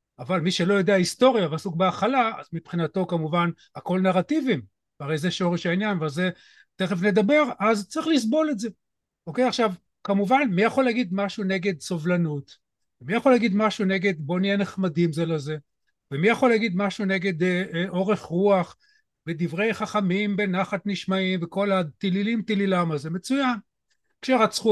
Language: Hebrew